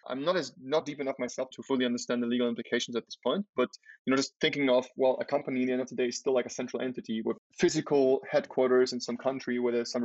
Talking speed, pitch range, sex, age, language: 275 wpm, 125-150 Hz, male, 20-39, English